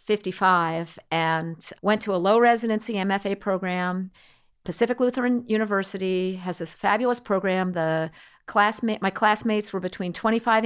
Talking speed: 130 wpm